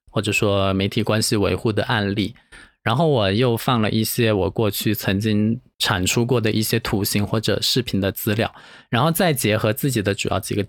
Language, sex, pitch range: Chinese, male, 105-130 Hz